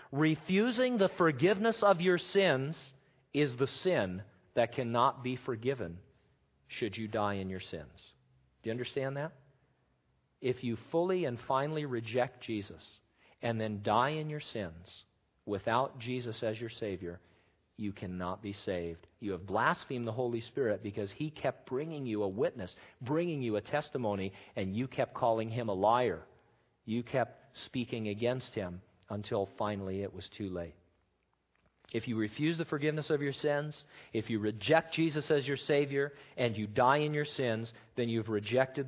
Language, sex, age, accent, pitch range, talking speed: English, male, 50-69, American, 105-150 Hz, 160 wpm